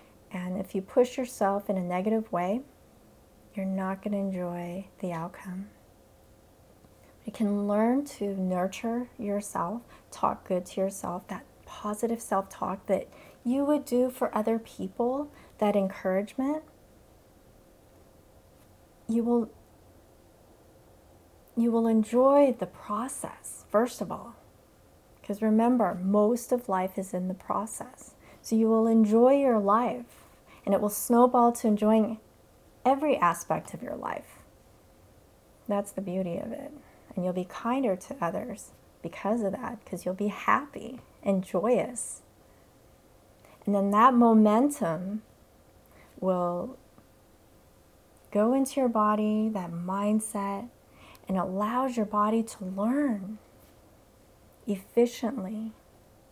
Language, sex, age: English, female, 30-49